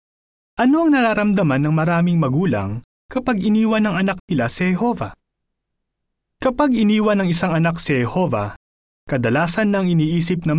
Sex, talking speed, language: male, 135 wpm, Filipino